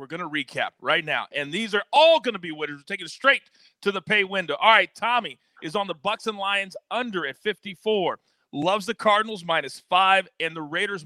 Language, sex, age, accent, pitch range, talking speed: English, male, 40-59, American, 165-220 Hz, 230 wpm